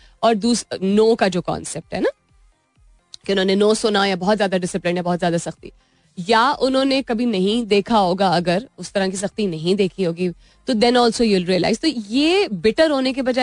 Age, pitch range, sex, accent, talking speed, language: 30-49, 190-270 Hz, female, native, 45 wpm, Hindi